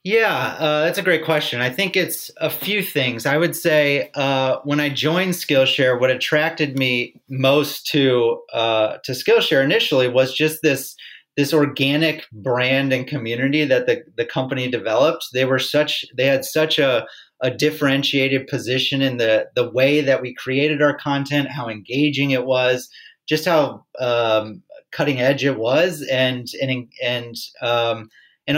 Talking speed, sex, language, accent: 160 wpm, male, English, American